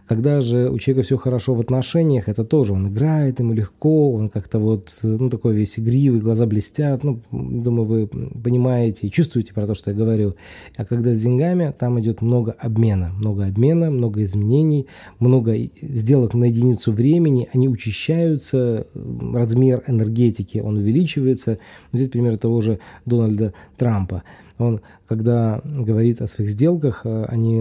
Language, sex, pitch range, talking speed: Russian, male, 110-130 Hz, 150 wpm